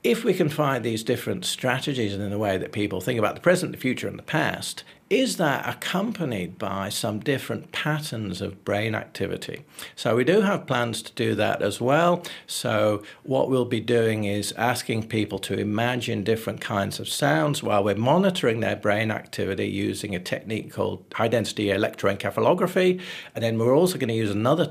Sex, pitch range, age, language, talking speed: male, 105-130 Hz, 50-69, English, 180 wpm